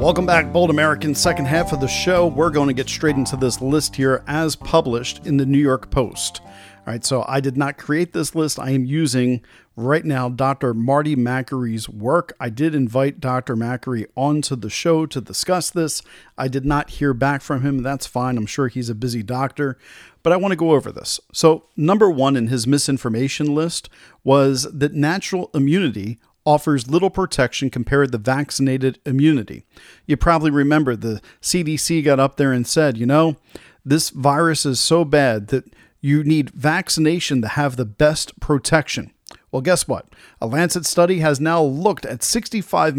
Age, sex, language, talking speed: 40-59, male, English, 185 wpm